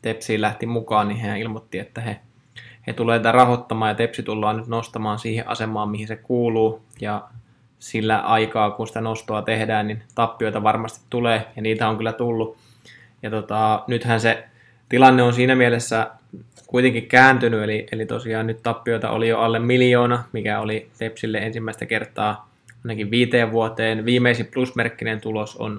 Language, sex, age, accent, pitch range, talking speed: Finnish, male, 20-39, native, 110-120 Hz, 160 wpm